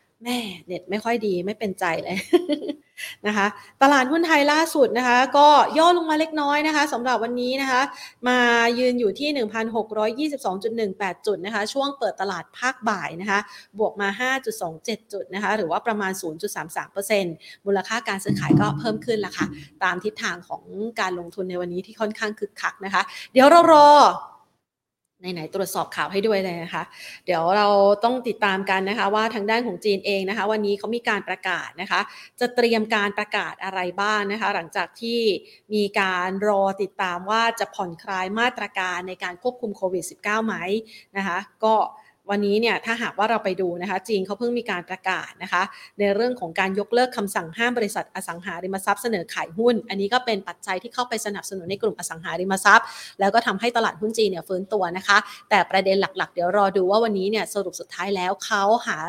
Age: 30-49